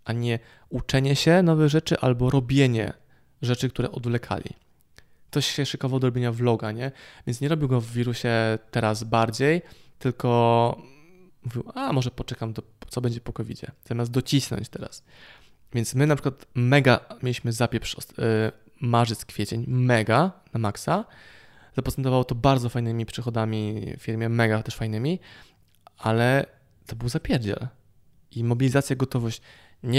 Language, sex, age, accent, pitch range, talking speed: Polish, male, 20-39, native, 115-140 Hz, 140 wpm